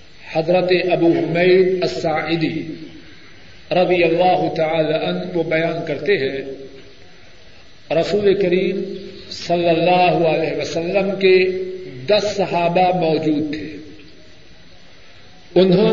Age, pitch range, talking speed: 50-69, 165-210 Hz, 90 wpm